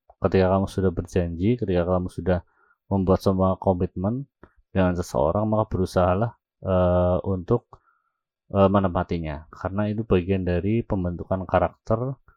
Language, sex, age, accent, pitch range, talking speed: Indonesian, male, 30-49, native, 90-105 Hz, 115 wpm